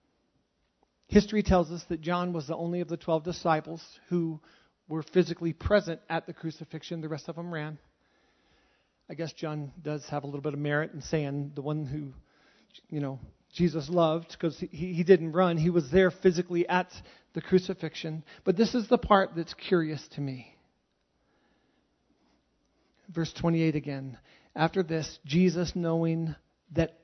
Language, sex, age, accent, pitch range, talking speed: English, male, 40-59, American, 155-180 Hz, 160 wpm